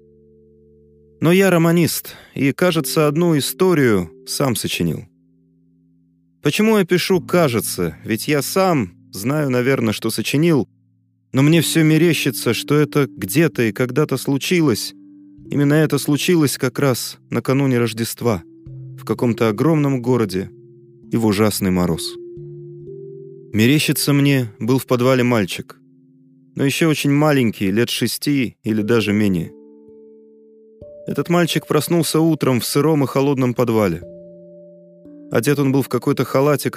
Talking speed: 120 wpm